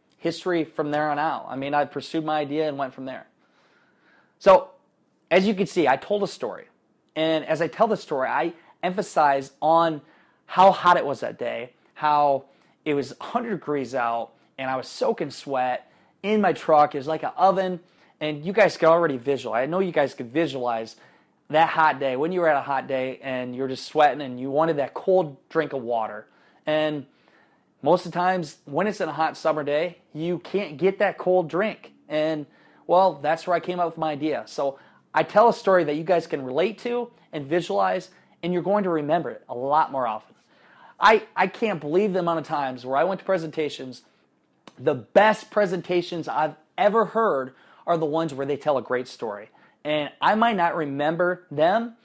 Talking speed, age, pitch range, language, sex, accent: 205 wpm, 20-39, 145-185 Hz, English, male, American